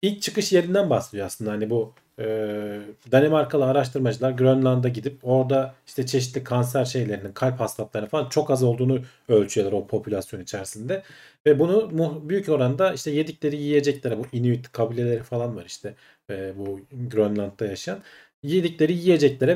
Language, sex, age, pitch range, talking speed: Turkish, male, 40-59, 115-155 Hz, 145 wpm